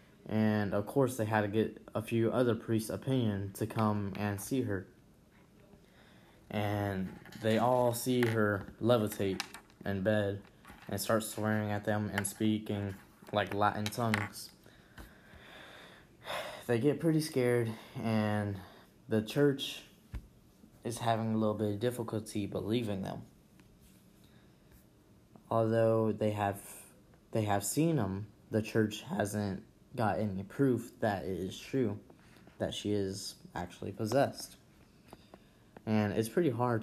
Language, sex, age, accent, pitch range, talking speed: English, male, 10-29, American, 100-115 Hz, 125 wpm